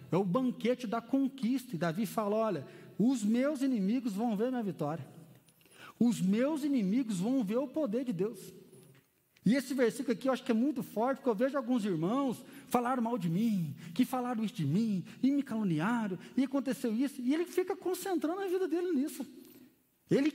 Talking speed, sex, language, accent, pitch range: 190 wpm, male, Portuguese, Brazilian, 205-275 Hz